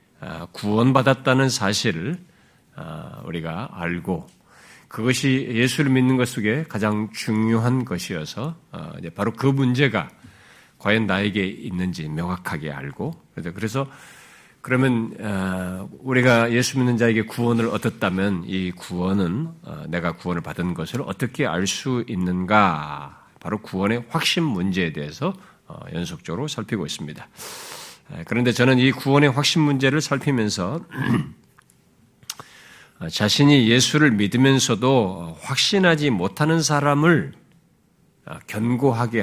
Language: Korean